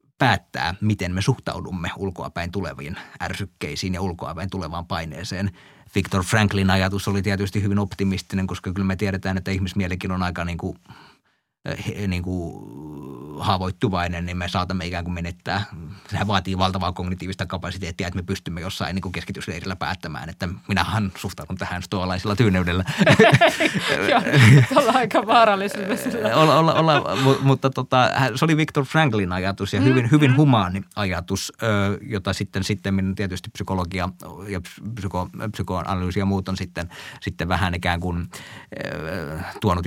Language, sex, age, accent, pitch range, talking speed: Finnish, male, 30-49, native, 90-105 Hz, 125 wpm